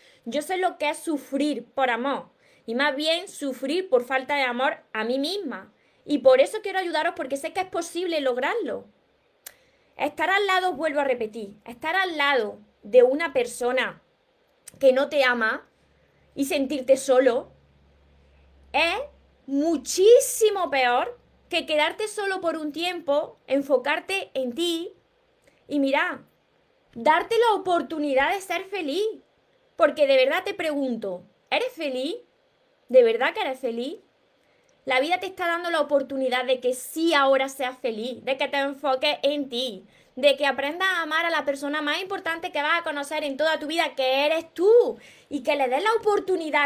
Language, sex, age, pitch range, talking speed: Spanish, female, 20-39, 265-350 Hz, 160 wpm